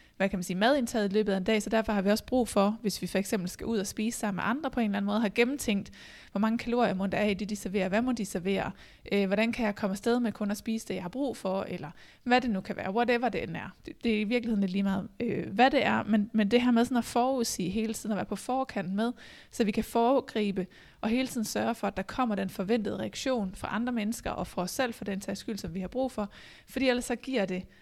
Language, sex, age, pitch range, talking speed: Danish, female, 20-39, 200-235 Hz, 290 wpm